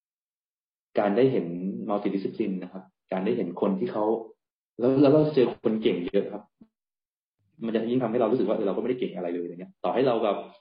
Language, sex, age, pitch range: Thai, male, 20-39, 95-125 Hz